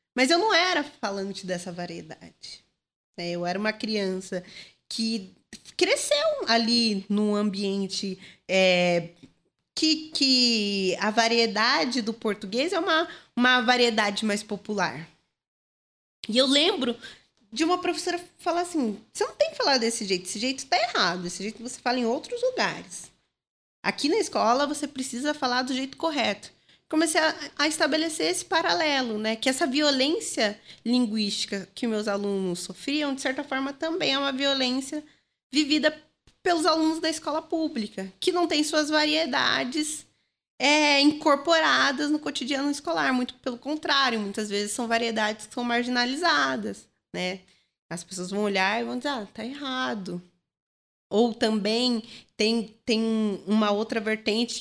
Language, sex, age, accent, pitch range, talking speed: Portuguese, female, 20-39, Brazilian, 210-300 Hz, 140 wpm